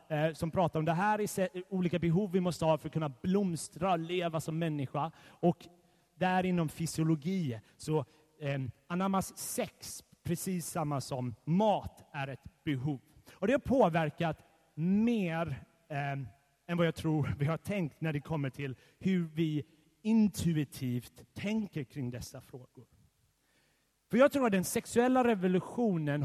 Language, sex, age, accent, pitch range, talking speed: Swedish, male, 30-49, native, 150-195 Hz, 150 wpm